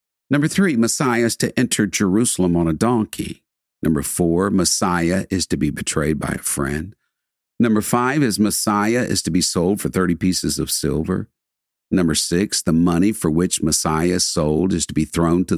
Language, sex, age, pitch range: English, male, 50-69, 85-110 Hz